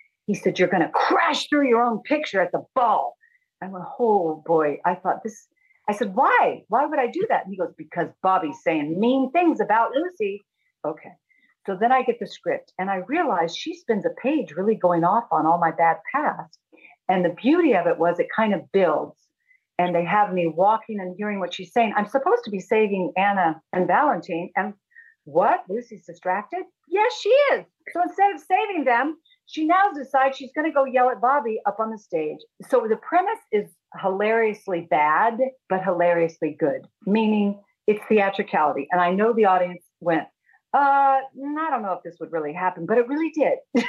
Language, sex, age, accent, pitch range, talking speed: English, female, 50-69, American, 180-280 Hz, 195 wpm